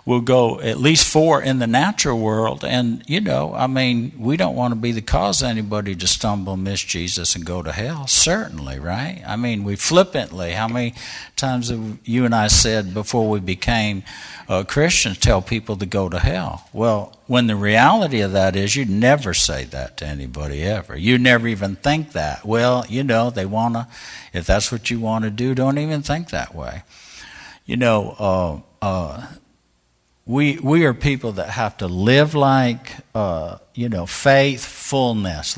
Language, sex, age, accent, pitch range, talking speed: English, male, 60-79, American, 95-125 Hz, 185 wpm